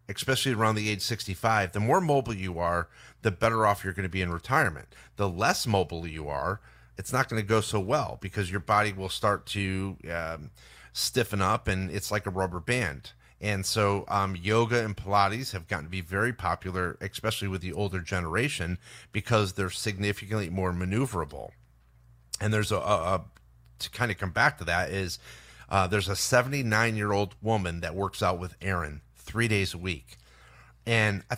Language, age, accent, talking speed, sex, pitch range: English, 30-49, American, 185 wpm, male, 95-115 Hz